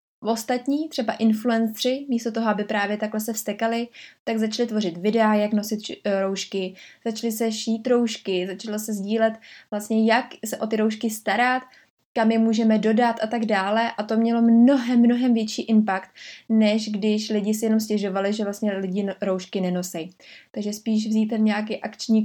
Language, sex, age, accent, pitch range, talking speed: Czech, female, 20-39, native, 200-230 Hz, 165 wpm